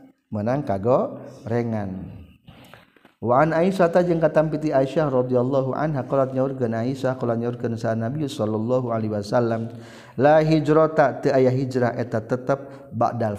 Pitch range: 115-150 Hz